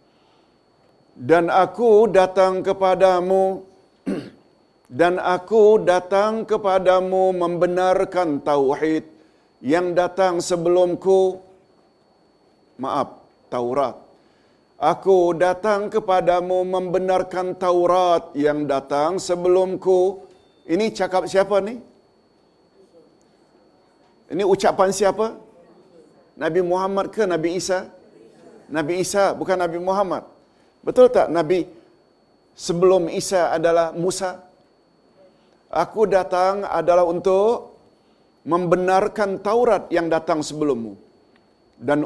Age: 50-69